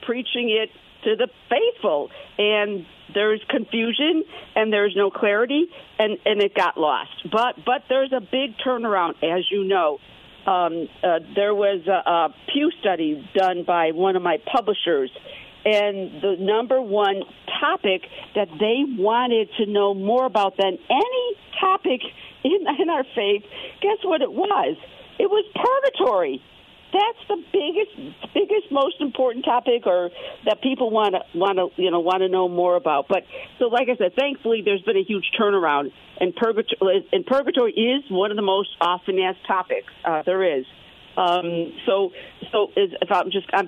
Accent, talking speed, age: American, 165 wpm, 60-79